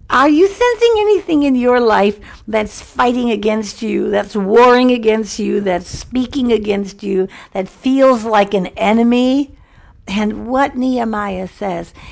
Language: English